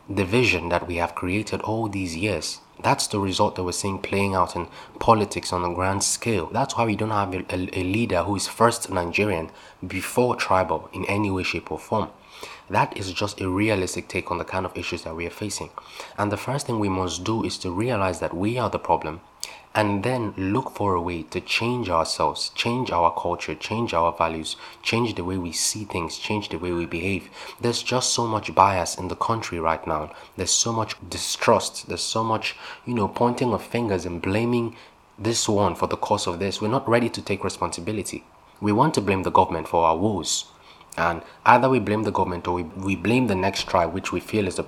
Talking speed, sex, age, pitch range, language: 215 wpm, male, 20-39, 90-110 Hz, English